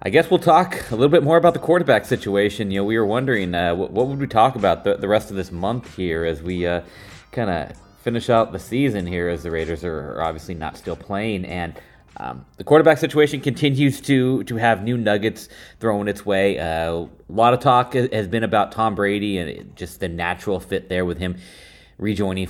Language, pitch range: English, 95-130 Hz